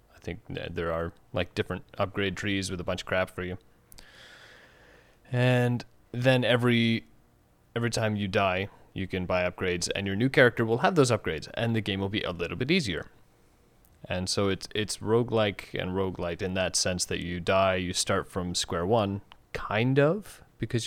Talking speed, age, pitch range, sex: 180 wpm, 30-49, 90-115 Hz, male